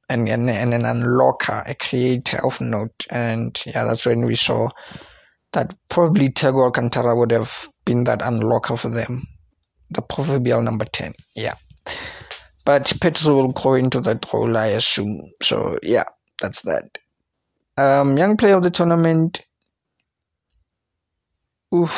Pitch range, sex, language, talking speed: 115-155 Hz, male, English, 140 wpm